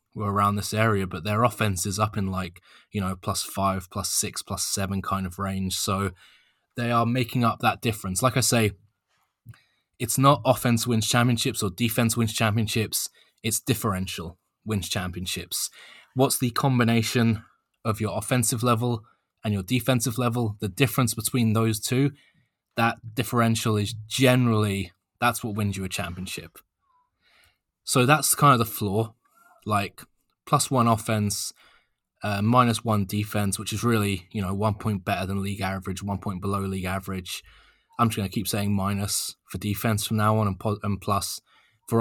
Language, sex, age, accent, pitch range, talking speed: English, male, 20-39, British, 100-120 Hz, 165 wpm